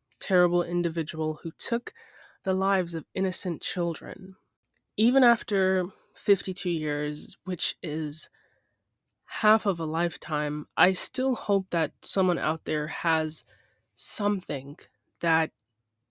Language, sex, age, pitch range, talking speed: English, female, 20-39, 160-200 Hz, 110 wpm